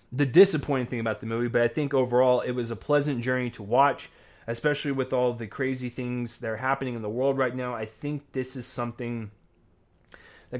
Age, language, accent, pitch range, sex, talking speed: 20-39, English, American, 120-145 Hz, male, 210 wpm